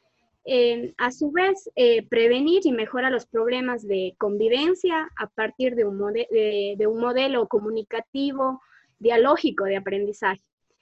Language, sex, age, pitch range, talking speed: Spanish, female, 20-39, 220-300 Hz, 140 wpm